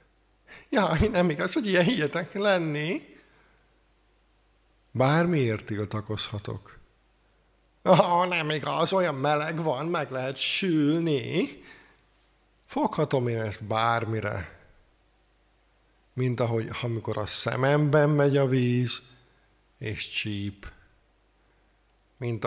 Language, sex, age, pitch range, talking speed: Hungarian, male, 50-69, 110-145 Hz, 90 wpm